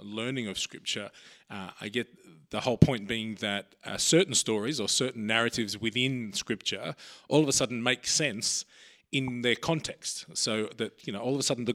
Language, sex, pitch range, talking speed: English, male, 105-130 Hz, 190 wpm